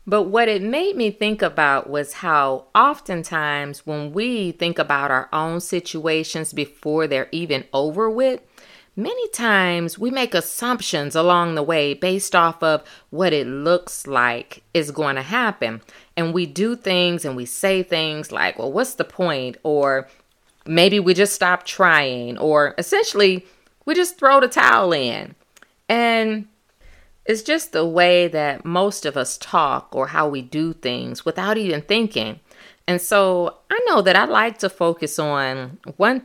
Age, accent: 30-49, American